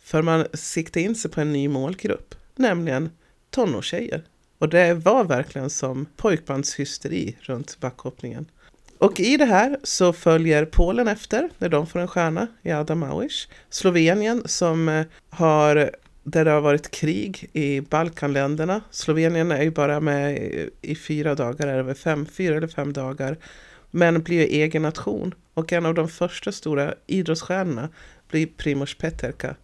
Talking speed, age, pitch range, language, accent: 145 wpm, 40-59, 140-175 Hz, Swedish, native